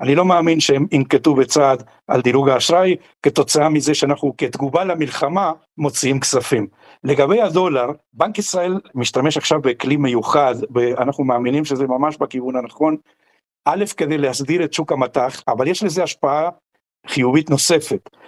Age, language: 60-79, Hebrew